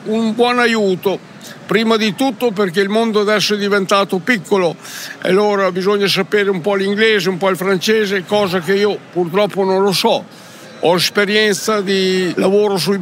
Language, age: Italian, 60-79